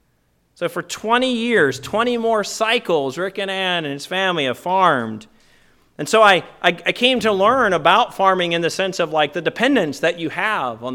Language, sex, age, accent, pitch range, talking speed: English, male, 30-49, American, 165-235 Hz, 195 wpm